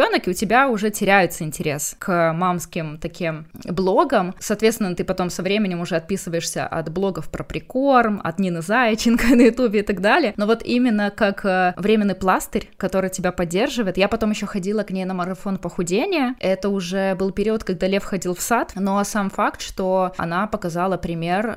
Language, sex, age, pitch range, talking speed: Ukrainian, female, 20-39, 175-215 Hz, 175 wpm